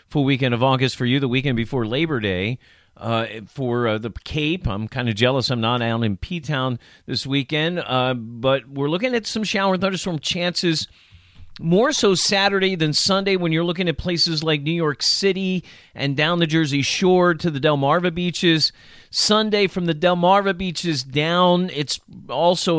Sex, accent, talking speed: male, American, 175 wpm